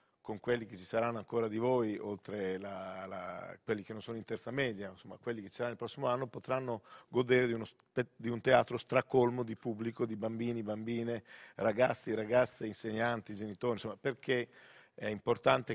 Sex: male